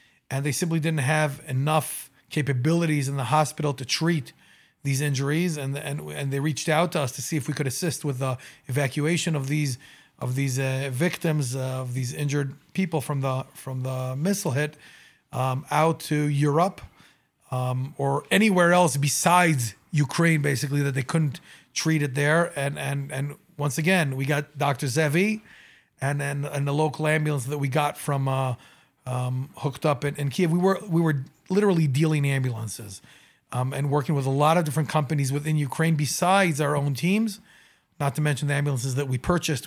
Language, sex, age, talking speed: English, male, 30-49, 185 wpm